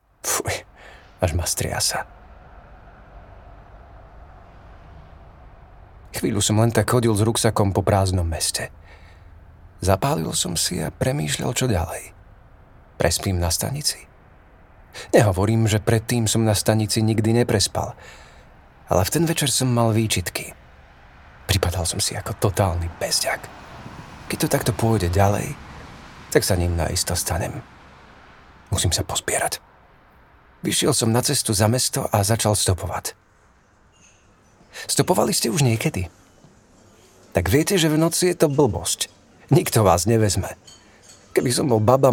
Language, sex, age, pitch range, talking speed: Slovak, male, 40-59, 85-115 Hz, 120 wpm